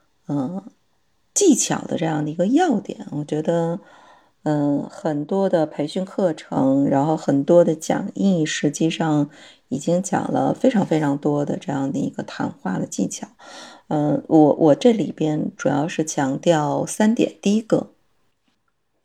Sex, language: female, Chinese